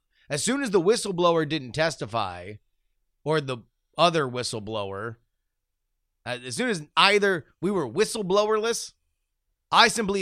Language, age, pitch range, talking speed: English, 30-49, 125-200 Hz, 115 wpm